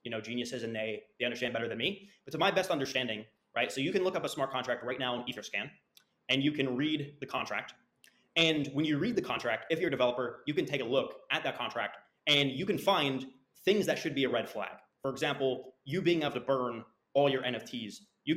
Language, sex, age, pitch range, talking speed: English, male, 20-39, 125-165 Hz, 240 wpm